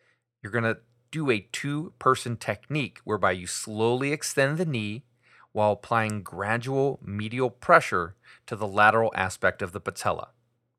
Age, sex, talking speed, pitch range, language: 30-49, male, 135 wpm, 105-125 Hz, English